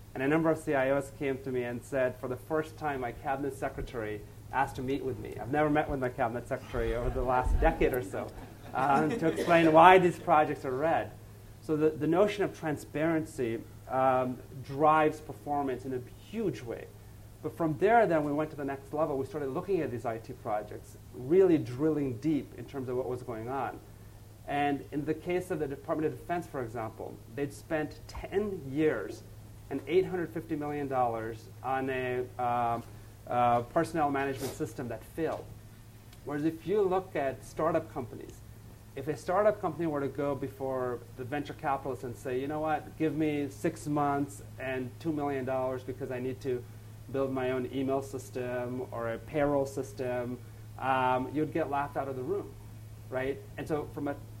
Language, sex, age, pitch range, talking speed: English, male, 30-49, 115-150 Hz, 185 wpm